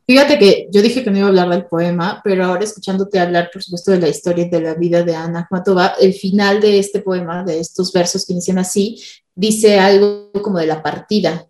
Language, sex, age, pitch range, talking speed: Spanish, female, 20-39, 180-210 Hz, 230 wpm